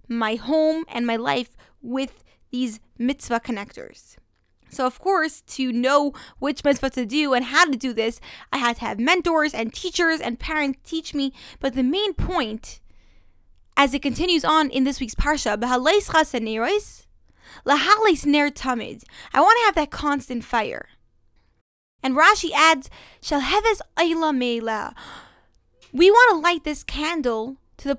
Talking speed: 145 wpm